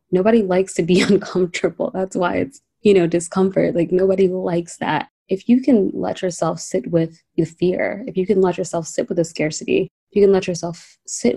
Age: 20-39